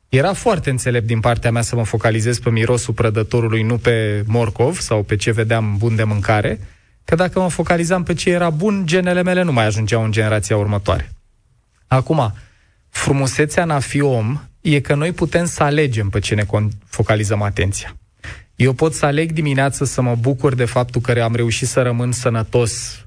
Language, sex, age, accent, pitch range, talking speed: Romanian, male, 20-39, native, 110-140 Hz, 180 wpm